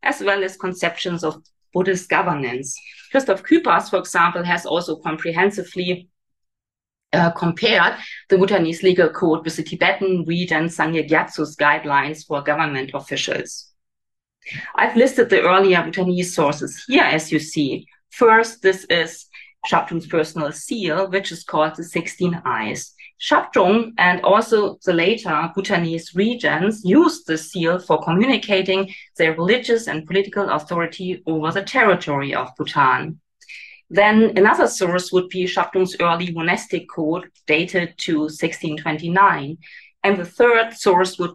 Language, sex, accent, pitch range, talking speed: English, female, German, 160-190 Hz, 130 wpm